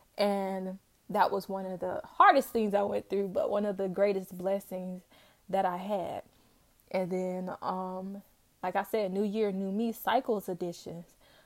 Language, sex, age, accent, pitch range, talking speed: English, female, 20-39, American, 185-210 Hz, 170 wpm